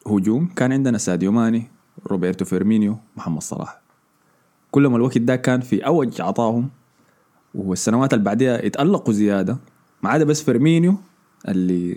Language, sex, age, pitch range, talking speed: Arabic, male, 20-39, 95-135 Hz, 125 wpm